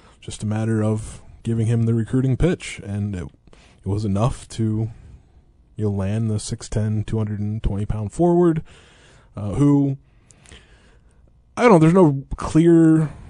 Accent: American